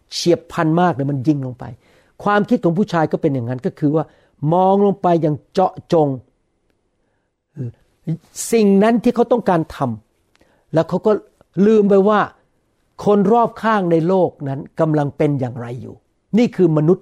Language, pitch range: Thai, 130-185 Hz